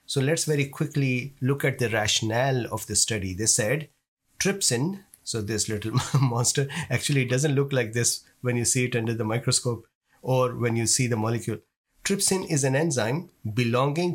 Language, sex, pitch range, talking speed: English, male, 115-145 Hz, 180 wpm